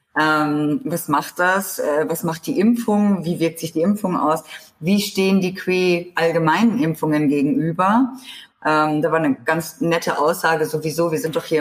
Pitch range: 160-195 Hz